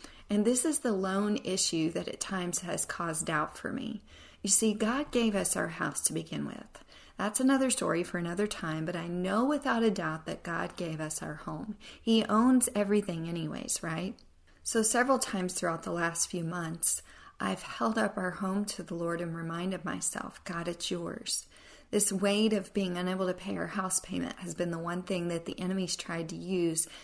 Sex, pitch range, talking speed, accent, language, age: female, 170-210 Hz, 200 wpm, American, English, 40-59